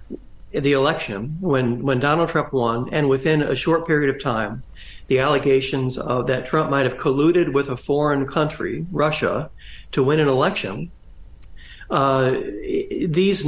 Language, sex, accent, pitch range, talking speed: English, male, American, 130-165 Hz, 145 wpm